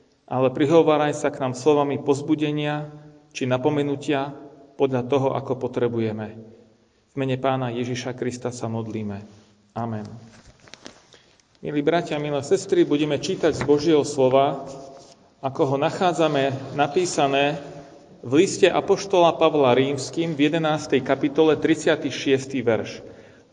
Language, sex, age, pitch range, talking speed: Slovak, male, 40-59, 130-155 Hz, 115 wpm